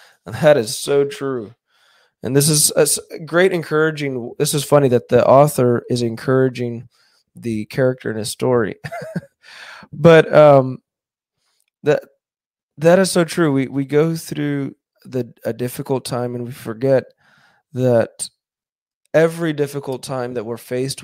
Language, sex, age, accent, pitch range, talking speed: English, male, 20-39, American, 125-150 Hz, 135 wpm